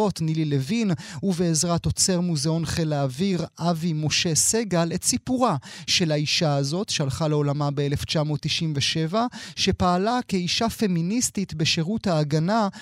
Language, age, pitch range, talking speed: Hebrew, 30-49, 160-215 Hz, 110 wpm